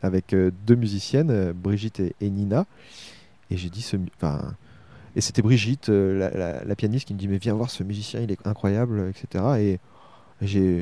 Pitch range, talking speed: 95-115 Hz, 195 wpm